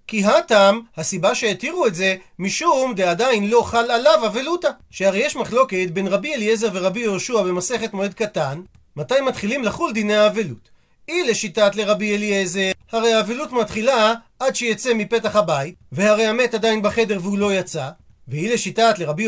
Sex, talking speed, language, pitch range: male, 155 wpm, Hebrew, 190-235 Hz